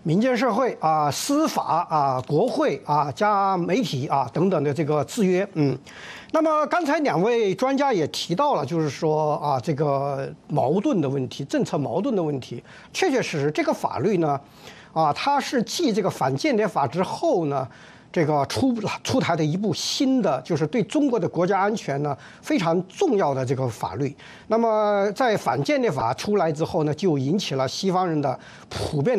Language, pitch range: Chinese, 155-235 Hz